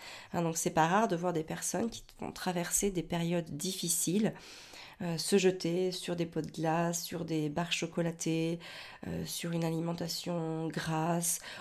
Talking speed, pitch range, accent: 165 wpm, 170-215 Hz, French